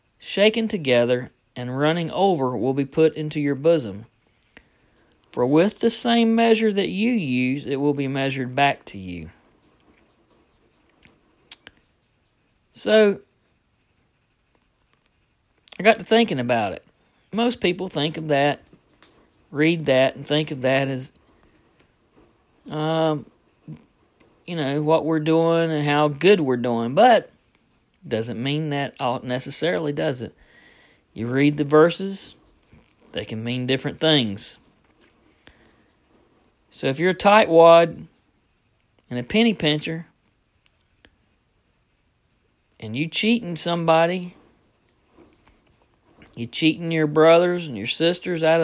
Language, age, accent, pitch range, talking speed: English, 40-59, American, 130-175 Hz, 115 wpm